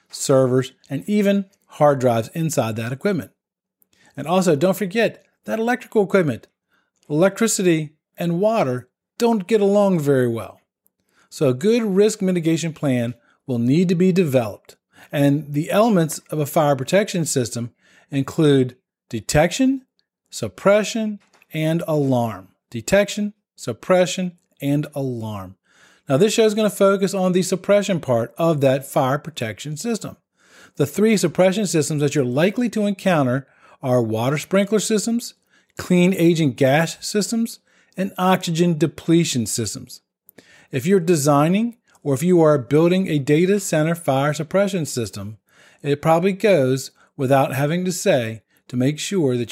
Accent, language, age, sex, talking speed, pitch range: American, English, 40-59, male, 135 wpm, 135-195 Hz